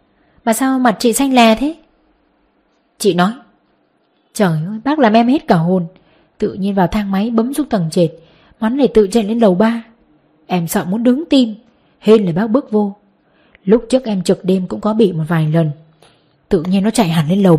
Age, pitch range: 20-39, 180-230 Hz